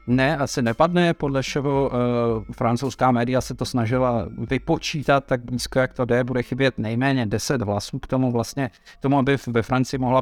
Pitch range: 120-135 Hz